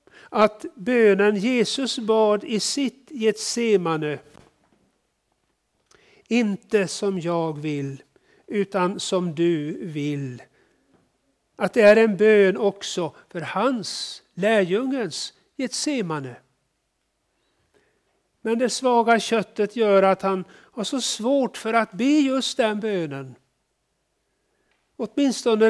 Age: 60-79